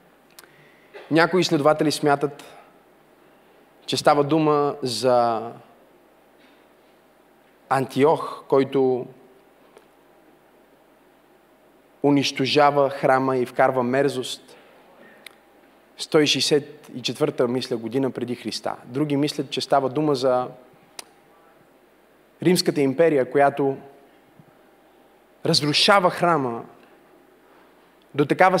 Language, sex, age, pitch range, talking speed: Bulgarian, male, 30-49, 135-170 Hz, 65 wpm